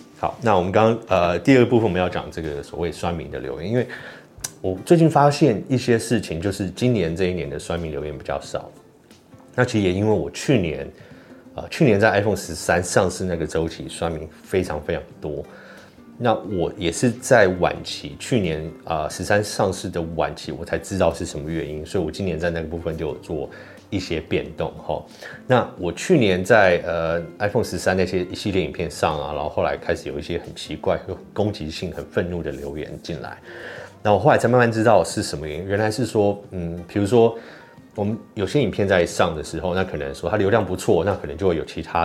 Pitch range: 80-110 Hz